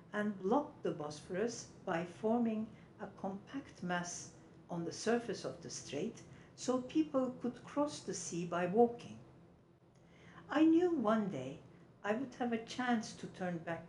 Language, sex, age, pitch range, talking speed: English, female, 60-79, 170-240 Hz, 150 wpm